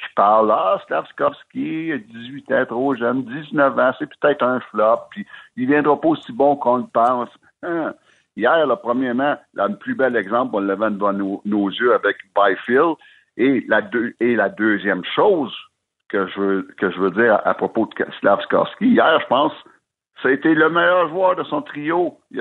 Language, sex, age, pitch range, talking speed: French, male, 60-79, 105-160 Hz, 195 wpm